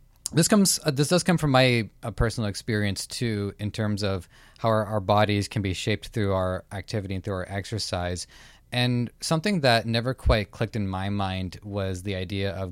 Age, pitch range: 20-39, 95-115 Hz